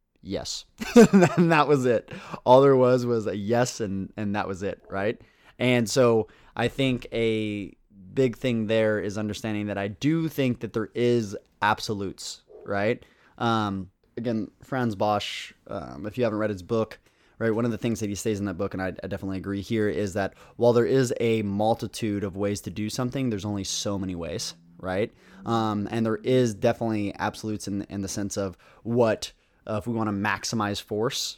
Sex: male